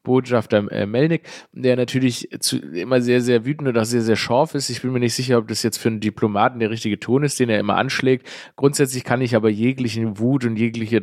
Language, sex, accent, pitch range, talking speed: German, male, German, 110-130 Hz, 225 wpm